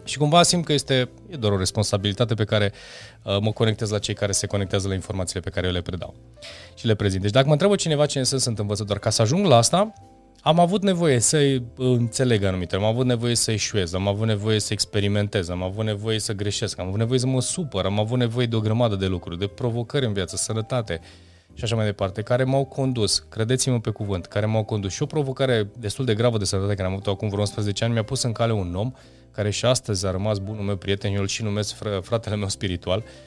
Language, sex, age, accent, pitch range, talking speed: Romanian, male, 20-39, native, 100-130 Hz, 230 wpm